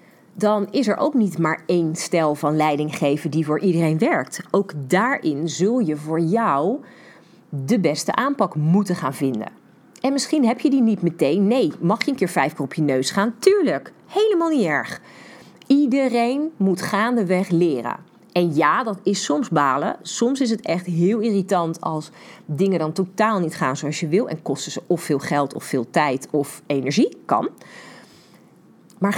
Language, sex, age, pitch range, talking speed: Dutch, female, 40-59, 165-240 Hz, 180 wpm